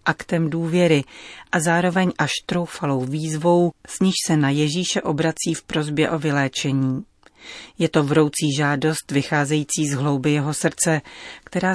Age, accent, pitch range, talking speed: 40-59, native, 145-170 Hz, 140 wpm